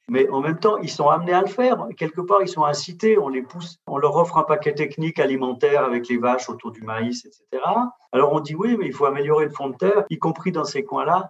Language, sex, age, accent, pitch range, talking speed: French, male, 40-59, French, 120-155 Hz, 260 wpm